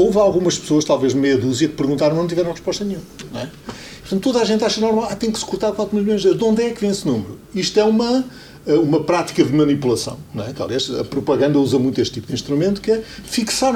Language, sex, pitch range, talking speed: Portuguese, male, 140-215 Hz, 260 wpm